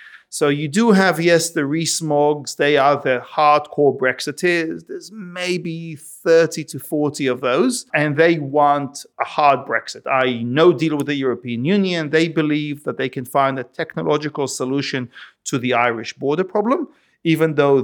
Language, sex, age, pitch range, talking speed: English, male, 40-59, 140-180 Hz, 160 wpm